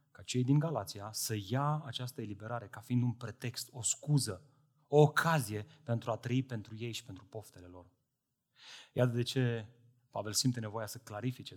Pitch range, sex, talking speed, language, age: 115-140 Hz, male, 170 wpm, Romanian, 30-49